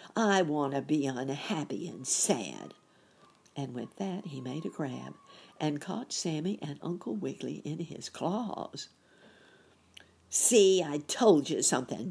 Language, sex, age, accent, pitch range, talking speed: English, female, 60-79, American, 145-200 Hz, 140 wpm